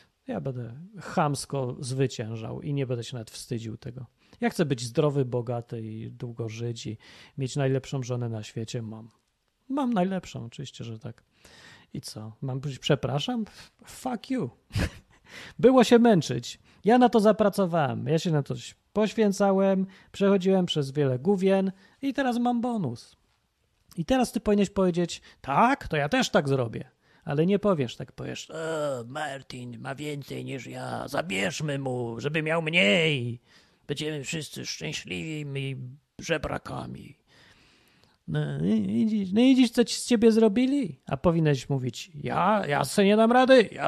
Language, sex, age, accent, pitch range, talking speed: Polish, male, 30-49, native, 125-200 Hz, 150 wpm